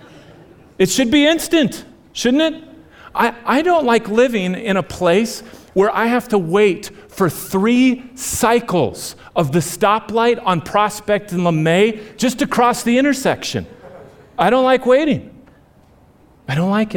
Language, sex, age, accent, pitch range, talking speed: English, male, 40-59, American, 130-210 Hz, 145 wpm